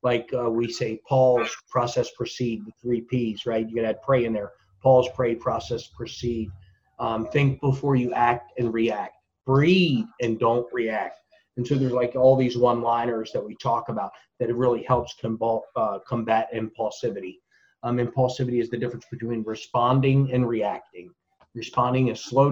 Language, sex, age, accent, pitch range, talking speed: English, male, 30-49, American, 120-150 Hz, 170 wpm